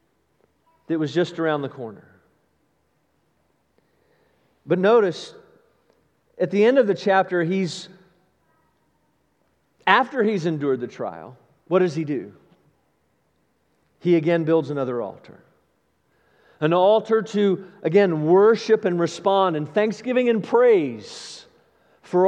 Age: 40-59